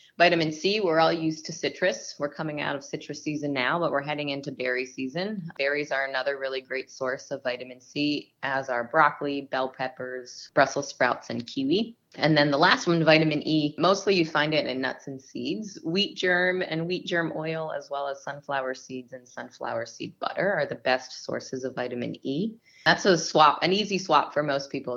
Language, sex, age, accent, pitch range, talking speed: English, female, 20-39, American, 135-170 Hz, 200 wpm